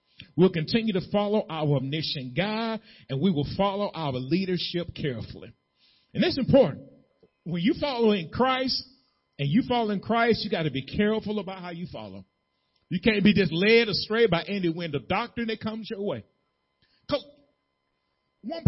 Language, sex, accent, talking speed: English, male, American, 165 wpm